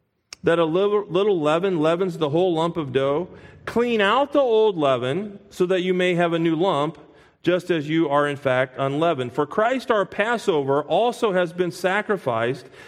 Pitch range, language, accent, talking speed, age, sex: 155-220 Hz, English, American, 180 wpm, 40-59, male